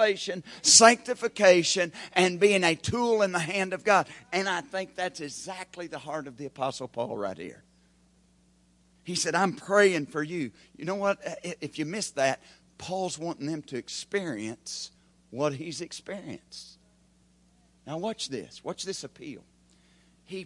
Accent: American